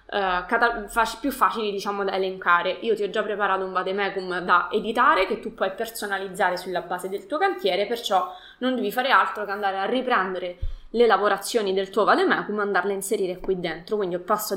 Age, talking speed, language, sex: 20-39, 200 wpm, Italian, female